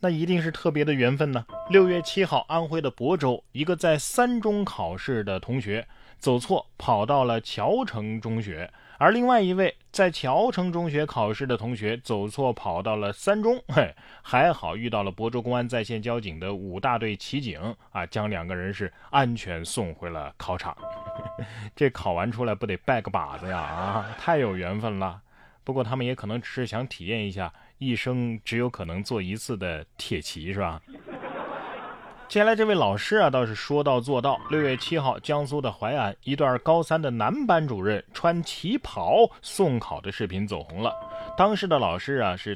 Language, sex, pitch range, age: Chinese, male, 105-150 Hz, 20-39